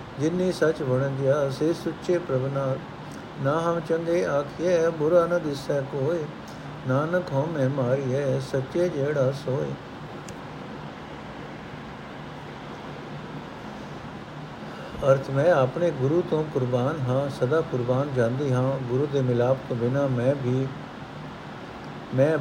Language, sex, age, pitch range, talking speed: Punjabi, male, 60-79, 130-150 Hz, 110 wpm